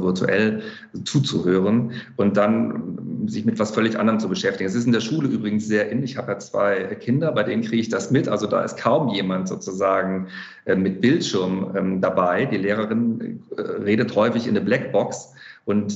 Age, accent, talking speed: 40-59, German, 175 wpm